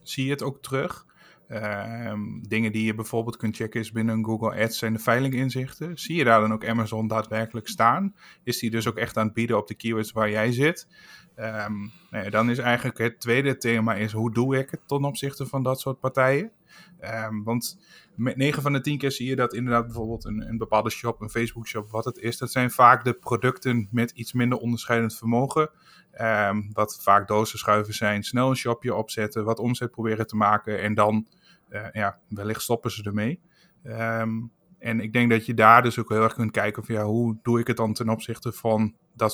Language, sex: Dutch, male